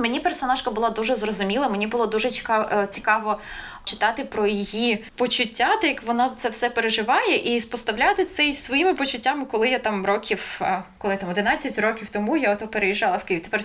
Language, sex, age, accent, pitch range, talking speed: Ukrainian, female, 20-39, native, 205-250 Hz, 165 wpm